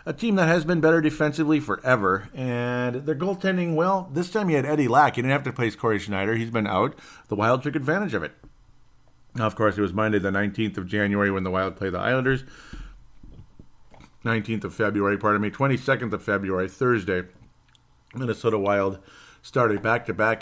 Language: English